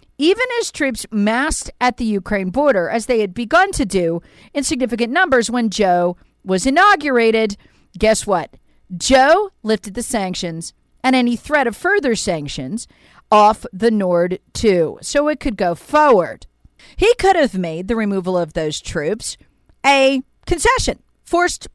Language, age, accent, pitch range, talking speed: English, 50-69, American, 205-310 Hz, 150 wpm